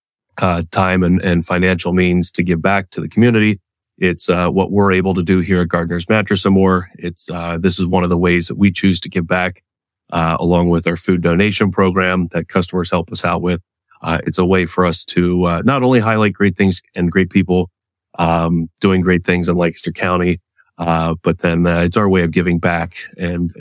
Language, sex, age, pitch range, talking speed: English, male, 30-49, 85-105 Hz, 220 wpm